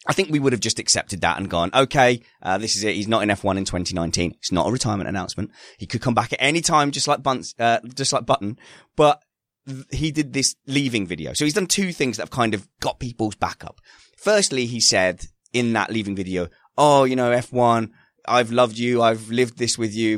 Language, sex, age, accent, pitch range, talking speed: English, male, 20-39, British, 105-140 Hz, 245 wpm